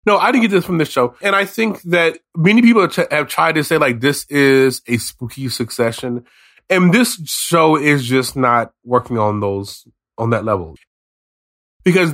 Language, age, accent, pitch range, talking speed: English, 20-39, American, 115-165 Hz, 185 wpm